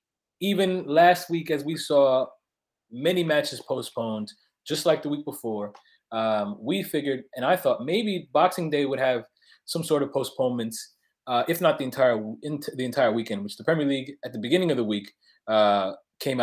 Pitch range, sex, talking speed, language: 115-165 Hz, male, 185 wpm, English